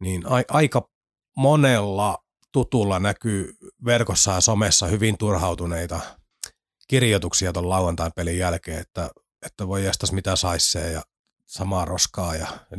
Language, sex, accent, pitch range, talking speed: Finnish, male, native, 90-115 Hz, 120 wpm